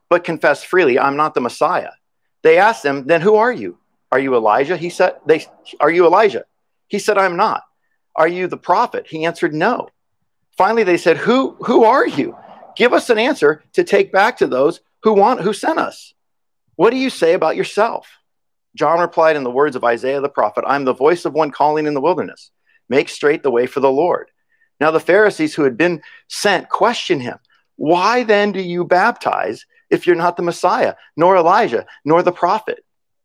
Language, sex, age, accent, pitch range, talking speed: English, male, 50-69, American, 165-270 Hz, 200 wpm